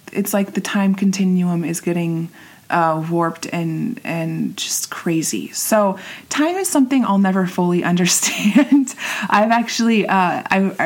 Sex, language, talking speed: female, English, 145 wpm